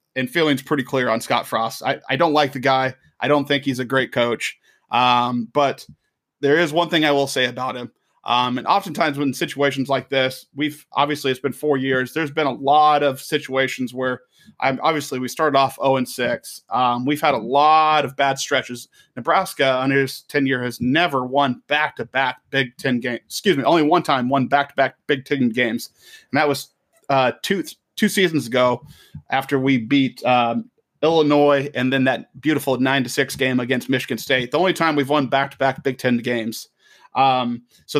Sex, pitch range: male, 125-145 Hz